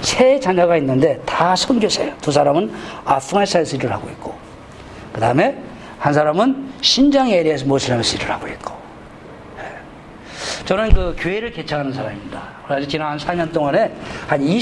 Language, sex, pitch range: Korean, male, 150-225 Hz